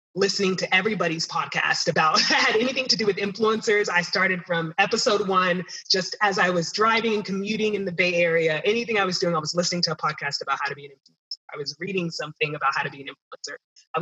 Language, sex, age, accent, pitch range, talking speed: English, female, 20-39, American, 160-210 Hz, 230 wpm